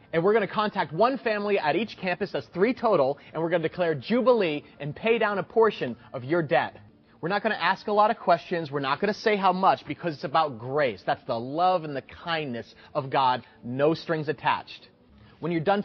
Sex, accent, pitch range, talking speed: male, American, 150-210 Hz, 230 wpm